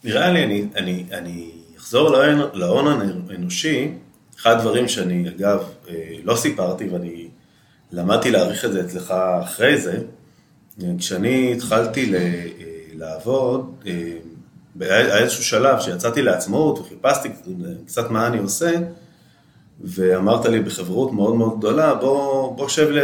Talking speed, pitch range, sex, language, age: 115 wpm, 90-125 Hz, male, Hebrew, 30-49